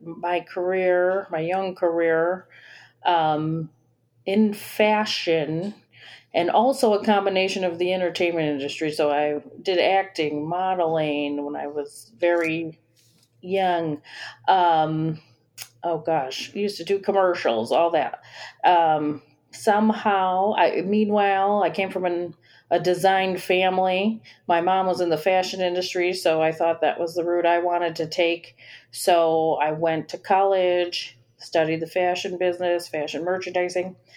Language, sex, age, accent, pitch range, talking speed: English, female, 40-59, American, 160-195 Hz, 130 wpm